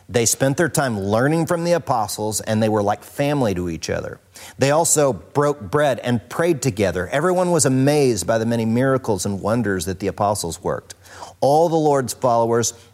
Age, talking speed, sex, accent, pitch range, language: 40-59, 185 wpm, male, American, 100-135 Hz, English